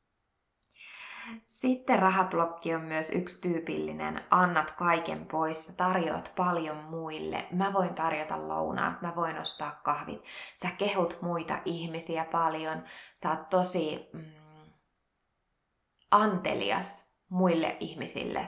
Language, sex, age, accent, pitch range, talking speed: Finnish, female, 20-39, native, 160-185 Hz, 100 wpm